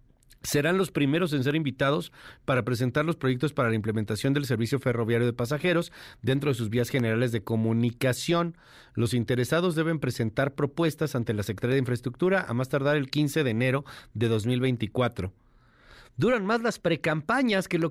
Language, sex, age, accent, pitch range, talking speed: Spanish, male, 40-59, Mexican, 125-175 Hz, 170 wpm